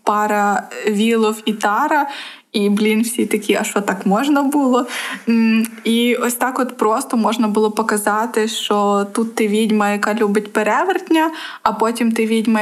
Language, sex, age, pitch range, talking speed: Ukrainian, female, 20-39, 210-235 Hz, 150 wpm